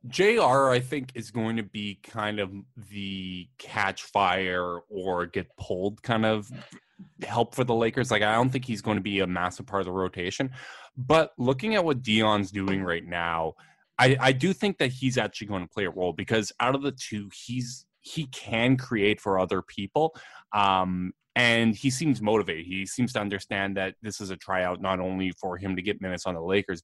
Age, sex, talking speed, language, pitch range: 20-39, male, 205 wpm, English, 95-120 Hz